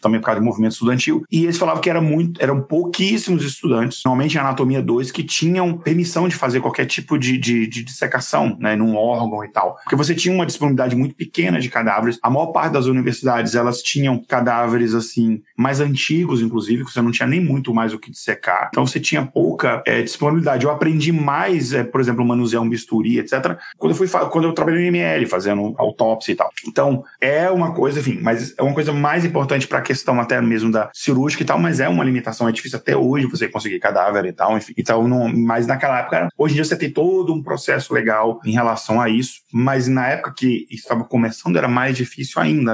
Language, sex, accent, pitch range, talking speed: Portuguese, male, Brazilian, 115-160 Hz, 220 wpm